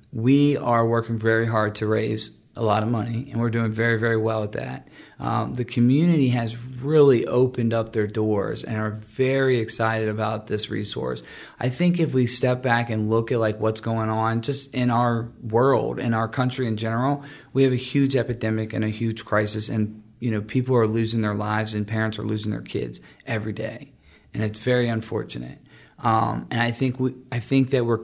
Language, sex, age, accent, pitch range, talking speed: English, male, 40-59, American, 110-130 Hz, 205 wpm